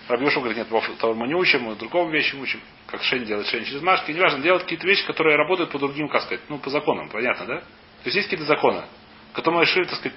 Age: 30-49